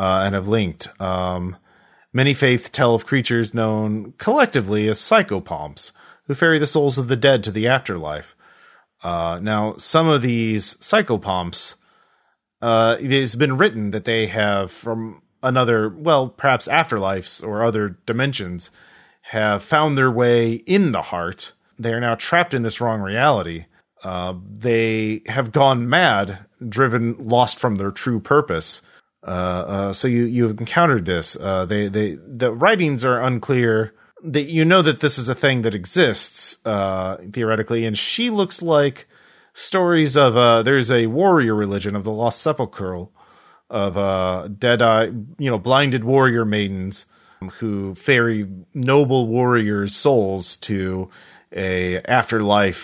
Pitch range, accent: 100-130 Hz, American